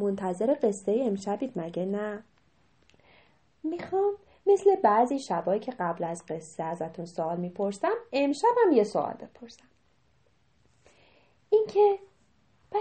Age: 30-49